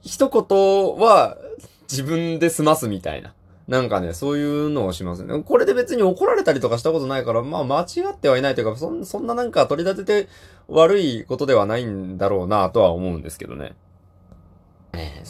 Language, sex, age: Japanese, male, 20-39